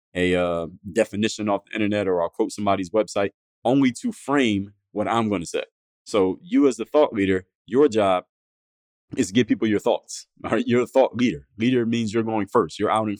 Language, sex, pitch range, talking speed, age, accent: English, male, 100-130 Hz, 215 wpm, 20-39, American